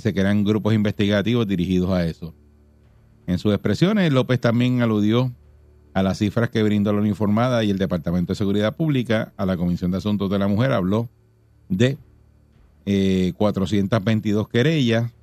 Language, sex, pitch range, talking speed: Spanish, male, 95-115 Hz, 155 wpm